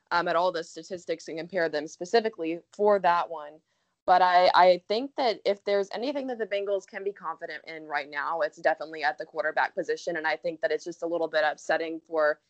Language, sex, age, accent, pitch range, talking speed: English, female, 20-39, American, 165-195 Hz, 220 wpm